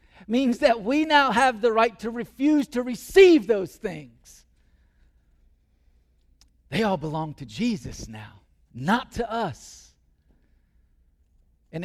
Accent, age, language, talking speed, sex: American, 40-59, English, 115 wpm, male